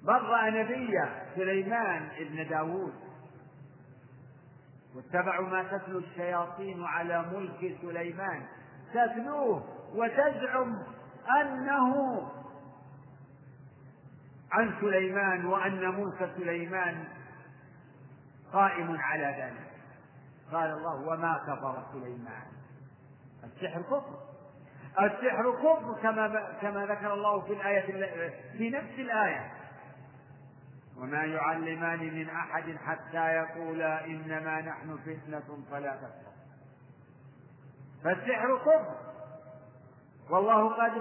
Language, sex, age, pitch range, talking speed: Arabic, male, 50-69, 140-215 Hz, 85 wpm